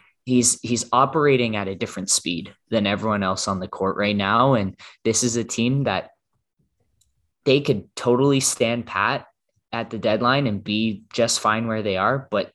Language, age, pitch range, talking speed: English, 20-39, 100-110 Hz, 175 wpm